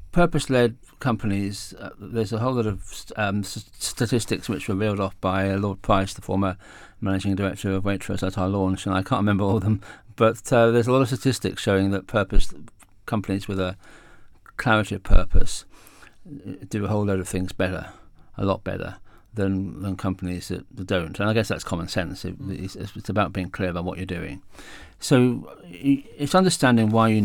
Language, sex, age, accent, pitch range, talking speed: English, male, 50-69, British, 95-115 Hz, 190 wpm